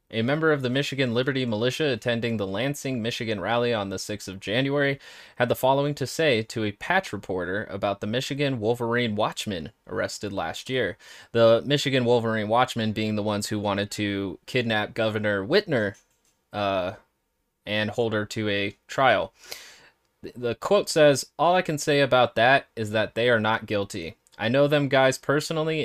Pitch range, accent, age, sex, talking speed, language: 110-140 Hz, American, 20-39, male, 170 wpm, English